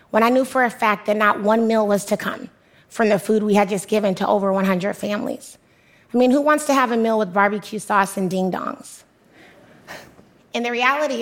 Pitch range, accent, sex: 205-240 Hz, American, female